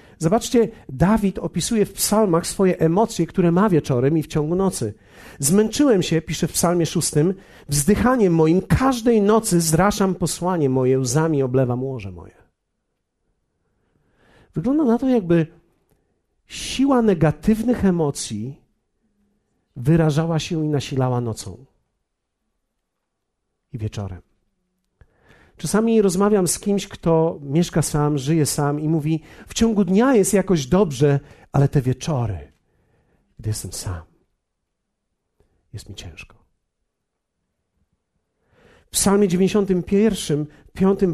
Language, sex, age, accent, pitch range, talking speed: Polish, male, 50-69, native, 140-200 Hz, 110 wpm